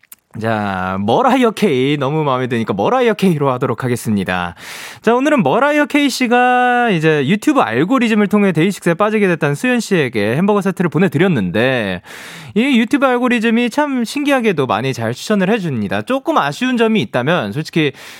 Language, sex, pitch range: Korean, male, 150-235 Hz